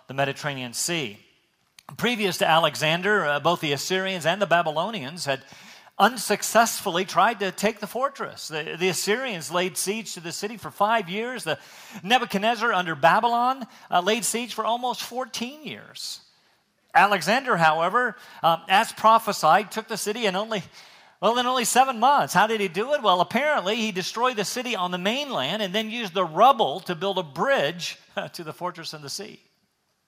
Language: English